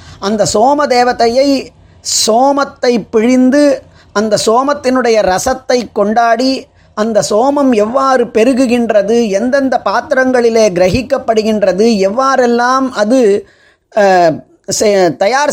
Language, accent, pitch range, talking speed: Tamil, native, 200-255 Hz, 75 wpm